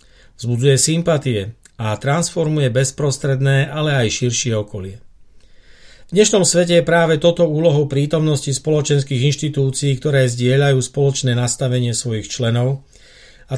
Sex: male